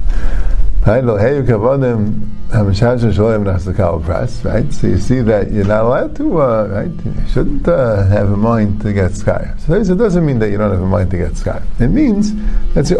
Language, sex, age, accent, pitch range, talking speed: English, male, 50-69, American, 100-160 Hz, 170 wpm